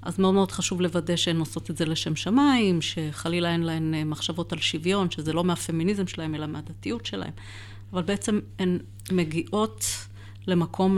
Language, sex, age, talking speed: Hebrew, female, 30-49, 160 wpm